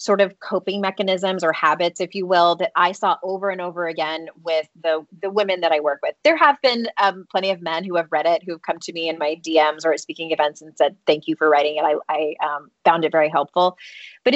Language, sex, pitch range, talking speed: English, female, 165-215 Hz, 260 wpm